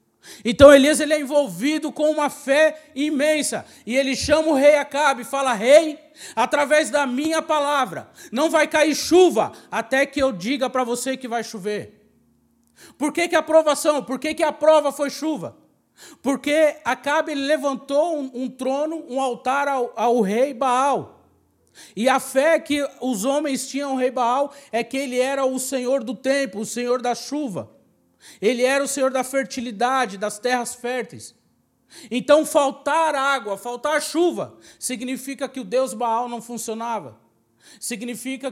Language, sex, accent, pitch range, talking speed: Portuguese, male, Brazilian, 240-290 Hz, 160 wpm